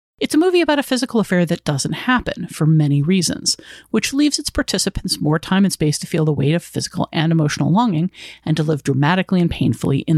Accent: American